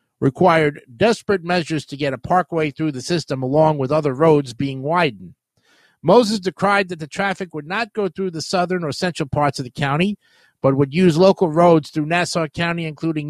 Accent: American